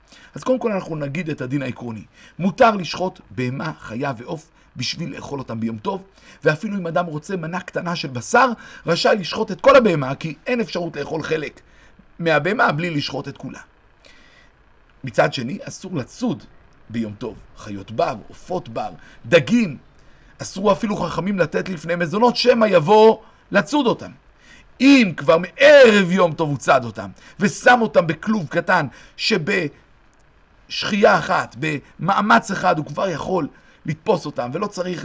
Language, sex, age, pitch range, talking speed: Hebrew, male, 50-69, 135-205 Hz, 145 wpm